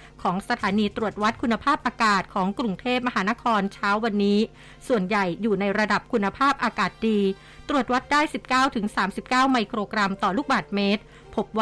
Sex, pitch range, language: female, 200-240 Hz, Thai